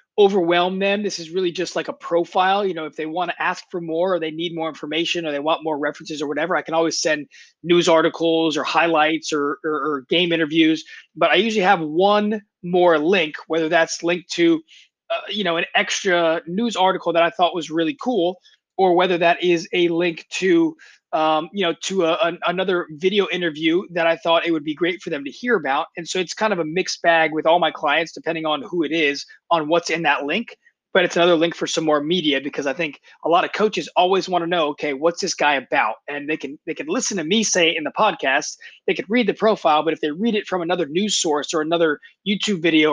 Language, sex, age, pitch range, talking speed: English, male, 20-39, 160-185 Hz, 240 wpm